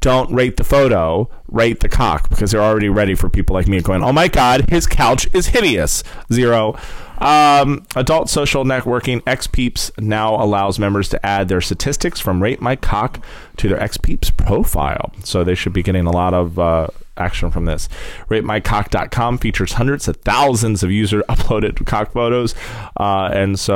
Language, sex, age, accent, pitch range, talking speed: English, male, 30-49, American, 90-115 Hz, 165 wpm